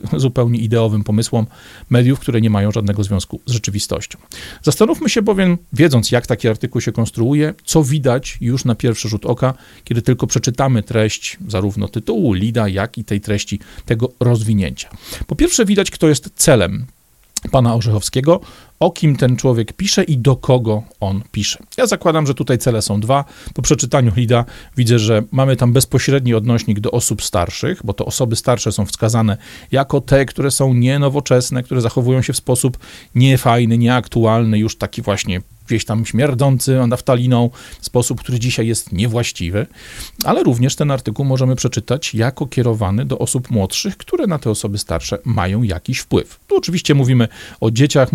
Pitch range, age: 110-135 Hz, 40-59